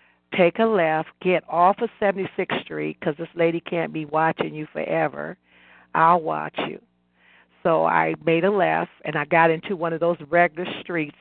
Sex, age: female, 50-69